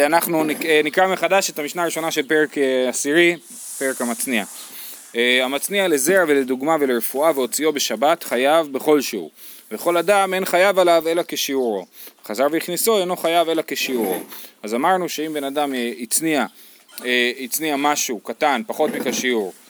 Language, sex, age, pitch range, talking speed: Hebrew, male, 20-39, 140-195 Hz, 130 wpm